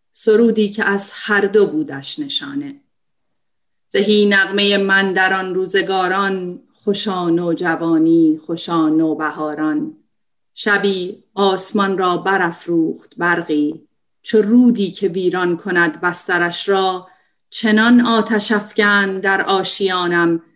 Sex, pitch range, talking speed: female, 170-205 Hz, 100 wpm